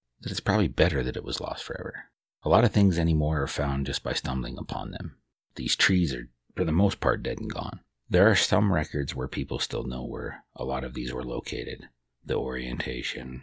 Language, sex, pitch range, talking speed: English, male, 65-75 Hz, 210 wpm